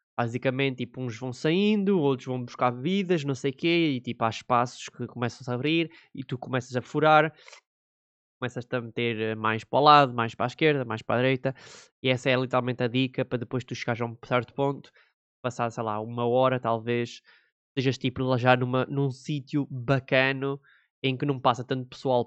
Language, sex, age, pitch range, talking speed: Portuguese, male, 20-39, 115-135 Hz, 200 wpm